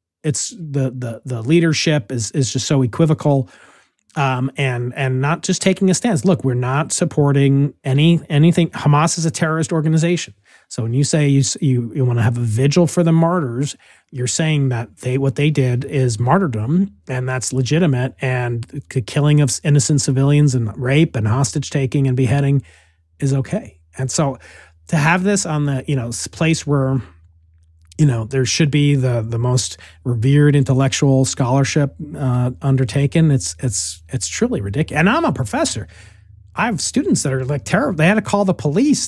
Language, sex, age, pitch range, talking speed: English, male, 30-49, 130-160 Hz, 180 wpm